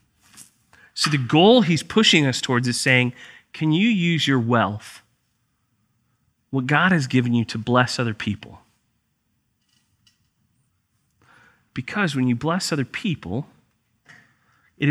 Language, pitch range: English, 120-170 Hz